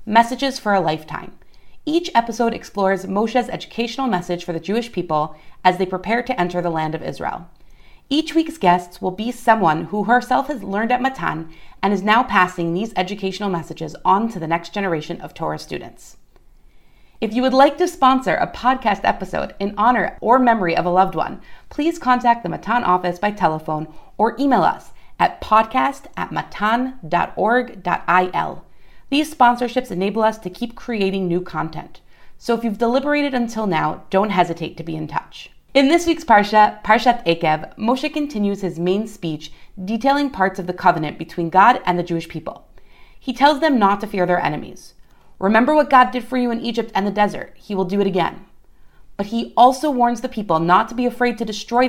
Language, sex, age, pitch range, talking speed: English, female, 30-49, 175-245 Hz, 185 wpm